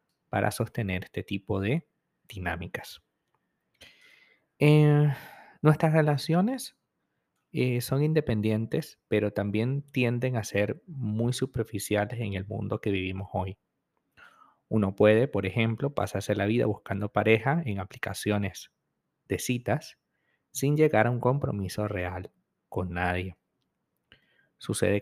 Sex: male